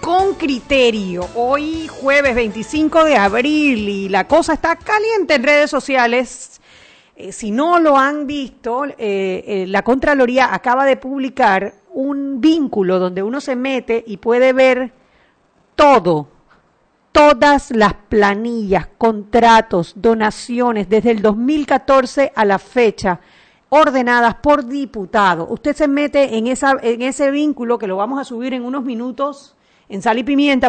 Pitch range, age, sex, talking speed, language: 230-285 Hz, 40-59, female, 140 wpm, Spanish